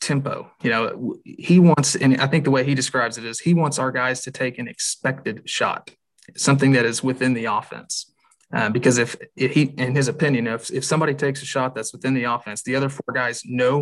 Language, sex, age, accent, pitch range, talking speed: English, male, 30-49, American, 125-140 Hz, 220 wpm